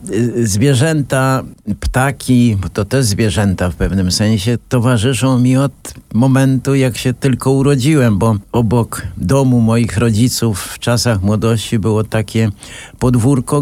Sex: male